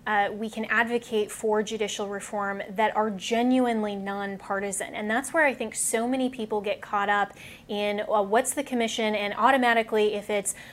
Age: 20-39